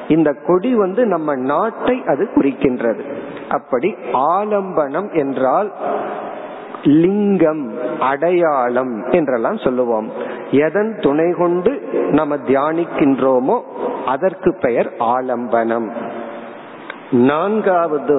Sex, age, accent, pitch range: male, 50-69, native, 140-200 Hz